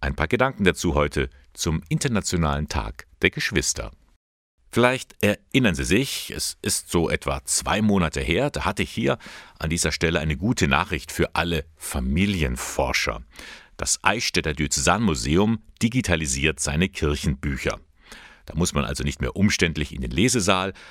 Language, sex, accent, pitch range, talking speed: German, male, German, 75-95 Hz, 145 wpm